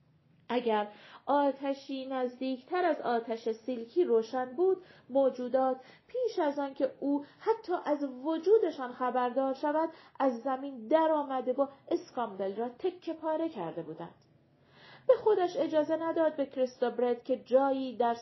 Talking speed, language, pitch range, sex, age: 130 wpm, Persian, 210-275 Hz, female, 40-59